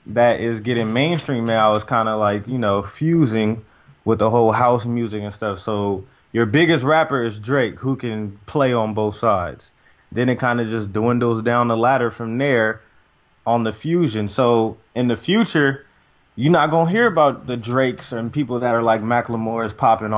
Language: English